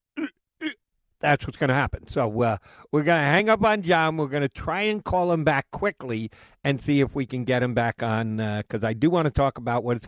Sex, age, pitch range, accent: male, 60-79, 115-155 Hz, American